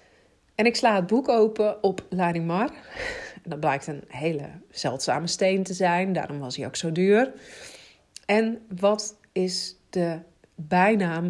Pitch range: 175-215 Hz